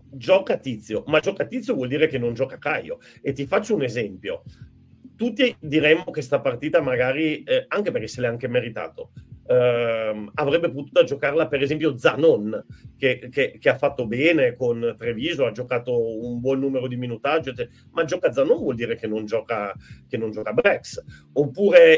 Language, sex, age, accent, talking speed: Italian, male, 40-59, native, 175 wpm